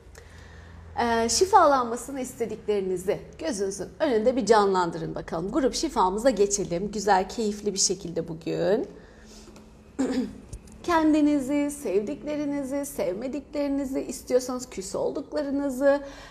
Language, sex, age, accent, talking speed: Turkish, female, 40-59, native, 75 wpm